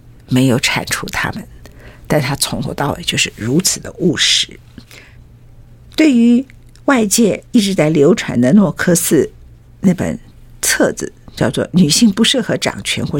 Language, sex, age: Chinese, female, 50-69